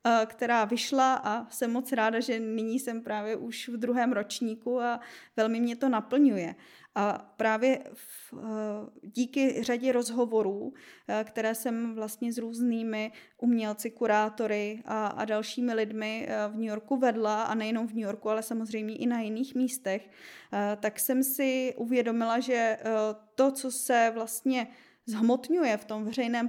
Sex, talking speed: female, 145 wpm